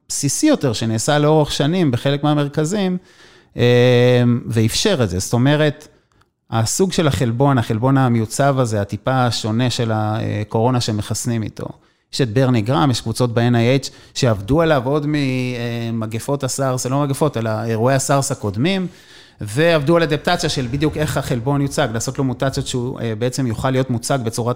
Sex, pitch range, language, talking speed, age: male, 120-150 Hz, Hebrew, 145 wpm, 30-49